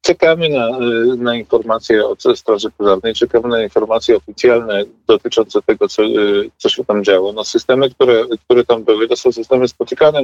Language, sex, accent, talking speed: Polish, male, native, 160 wpm